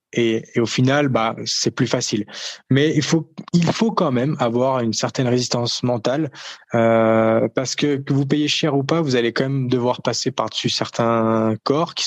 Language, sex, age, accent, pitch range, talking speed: French, male, 20-39, French, 120-145 Hz, 195 wpm